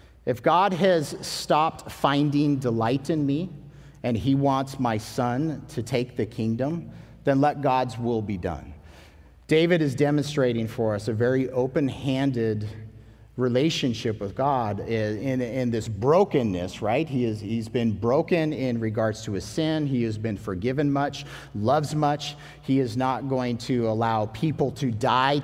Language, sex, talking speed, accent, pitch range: English, male, 150 wpm, American, 110-150 Hz